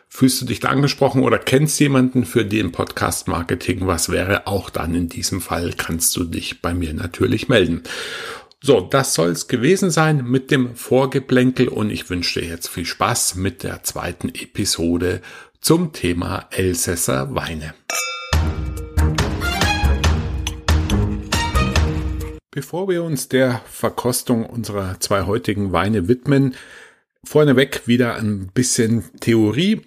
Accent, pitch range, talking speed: German, 85-125 Hz, 130 wpm